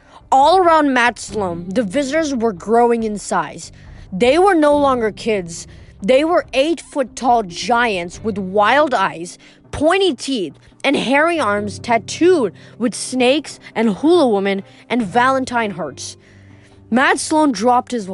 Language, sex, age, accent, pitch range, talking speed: English, female, 20-39, American, 195-285 Hz, 140 wpm